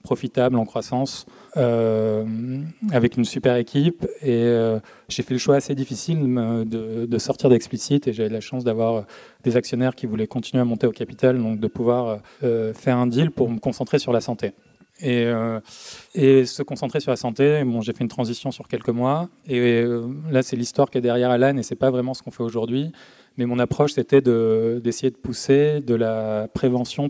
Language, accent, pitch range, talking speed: French, French, 115-130 Hz, 205 wpm